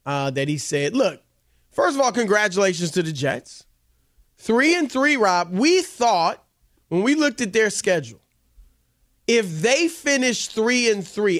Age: 30-49